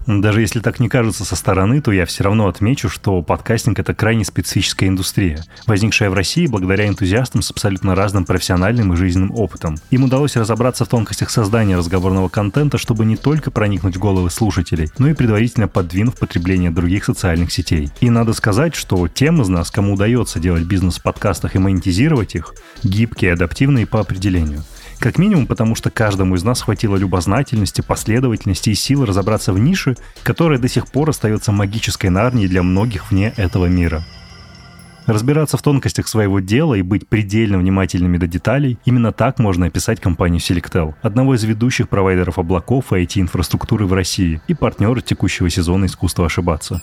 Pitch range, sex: 95-120 Hz, male